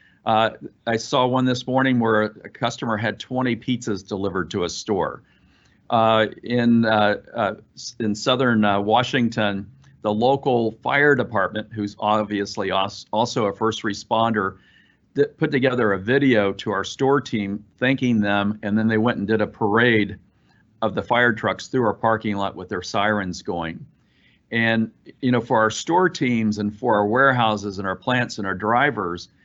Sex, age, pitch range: male, 50-69, 105-120 Hz